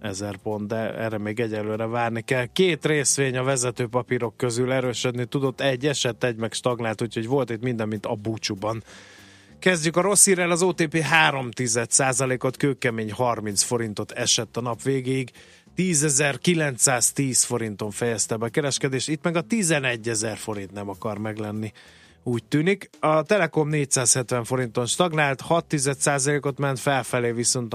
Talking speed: 150 wpm